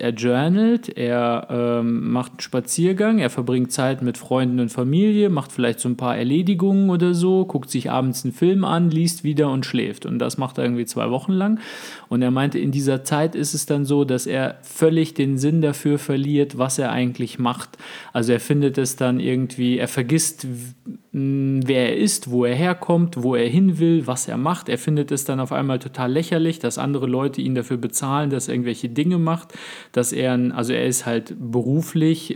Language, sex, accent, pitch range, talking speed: German, male, German, 120-150 Hz, 200 wpm